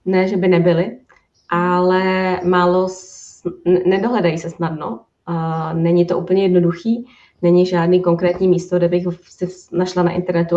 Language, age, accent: Czech, 20-39, native